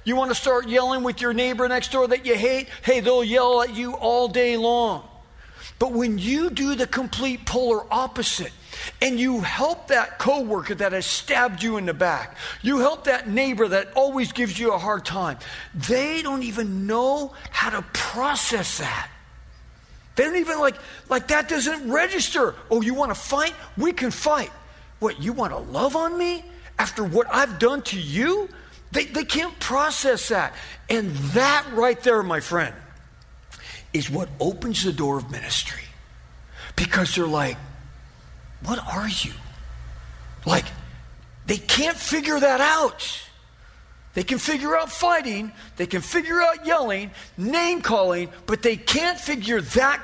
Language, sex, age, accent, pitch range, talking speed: English, male, 50-69, American, 190-275 Hz, 160 wpm